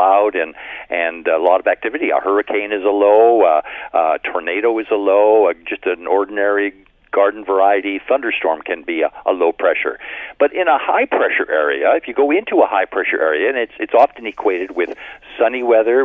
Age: 50-69